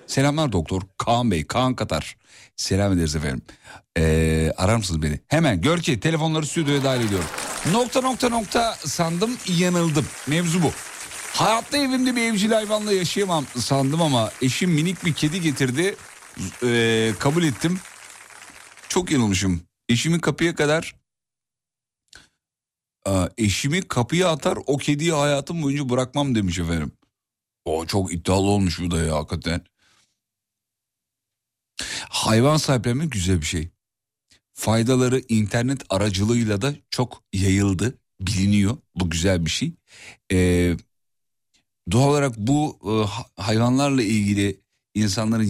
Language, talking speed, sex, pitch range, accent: Turkish, 120 wpm, male, 95-150 Hz, native